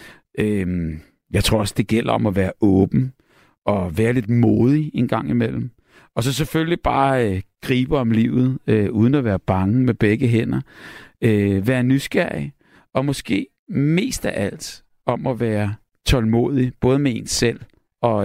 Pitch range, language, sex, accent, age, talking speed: 100-130 Hz, Danish, male, native, 60-79, 160 wpm